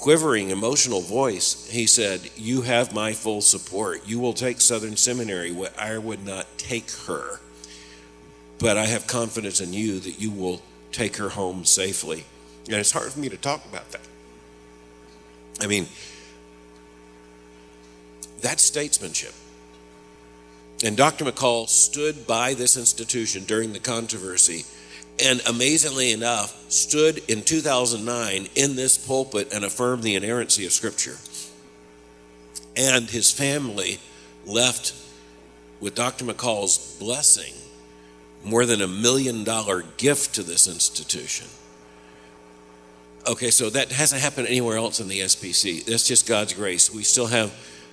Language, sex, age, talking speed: English, male, 50-69, 130 wpm